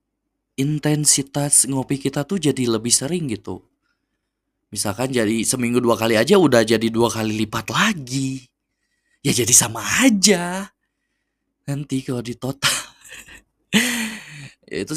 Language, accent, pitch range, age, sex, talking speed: Indonesian, native, 100-125 Hz, 20-39, male, 115 wpm